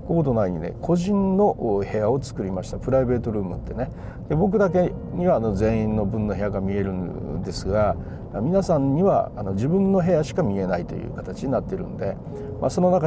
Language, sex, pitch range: Japanese, male, 105-150 Hz